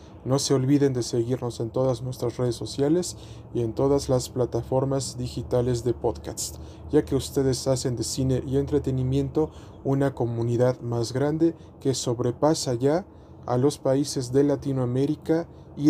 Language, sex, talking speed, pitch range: Spanish, male, 145 wpm, 120-145 Hz